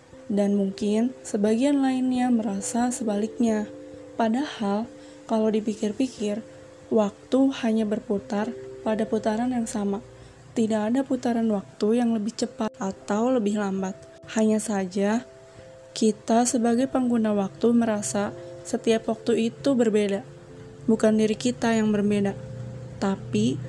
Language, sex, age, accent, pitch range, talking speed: Indonesian, female, 20-39, native, 205-235 Hz, 110 wpm